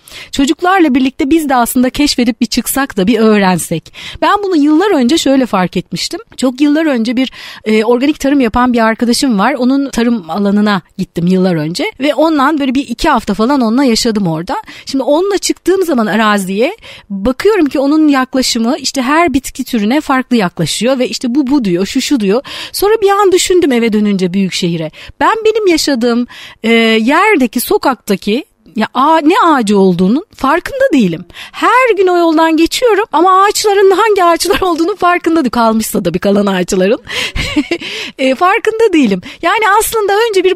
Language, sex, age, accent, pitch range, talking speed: Turkish, female, 40-59, native, 225-320 Hz, 165 wpm